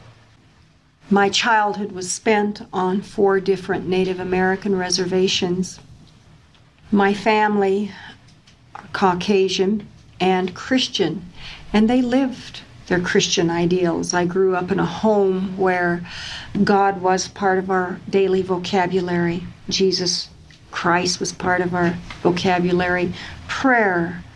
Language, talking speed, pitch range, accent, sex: English, 105 wpm, 180-205 Hz, American, female